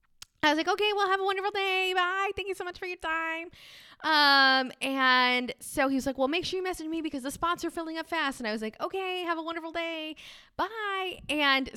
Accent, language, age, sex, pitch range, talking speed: American, English, 20-39, female, 215-315 Hz, 240 wpm